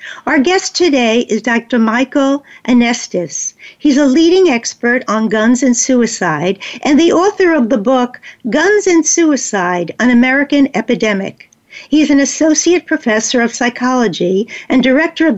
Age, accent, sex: 60-79, American, female